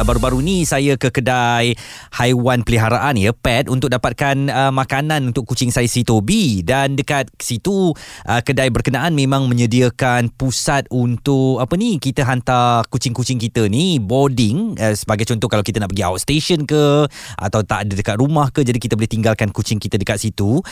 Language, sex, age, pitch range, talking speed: Malay, male, 20-39, 110-150 Hz, 170 wpm